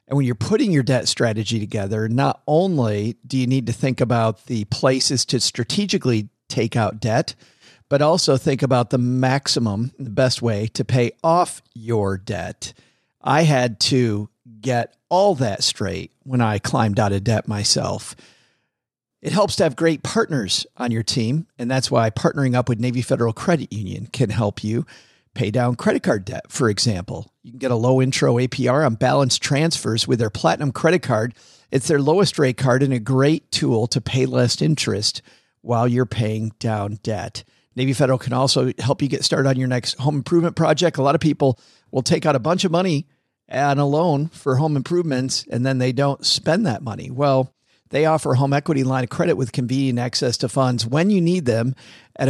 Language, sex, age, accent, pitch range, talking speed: English, male, 50-69, American, 115-140 Hz, 195 wpm